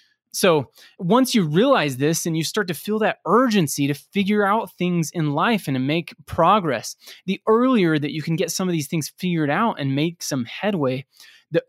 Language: English